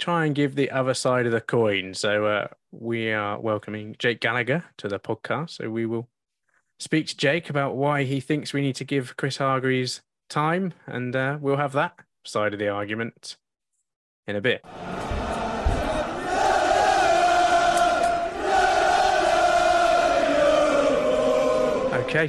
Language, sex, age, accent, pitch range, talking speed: English, male, 20-39, British, 115-150 Hz, 130 wpm